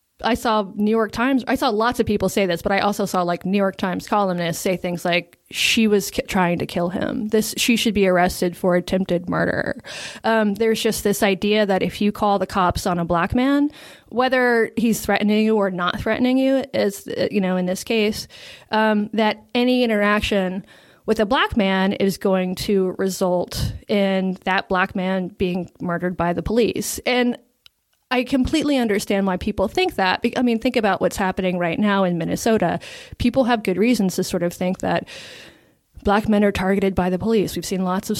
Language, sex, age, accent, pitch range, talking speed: English, female, 20-39, American, 185-225 Hz, 200 wpm